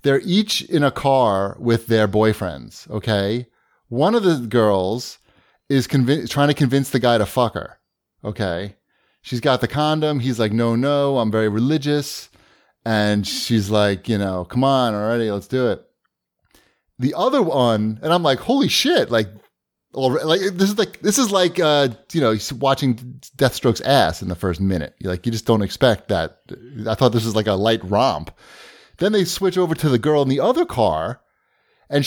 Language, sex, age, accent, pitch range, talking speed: English, male, 30-49, American, 115-175 Hz, 190 wpm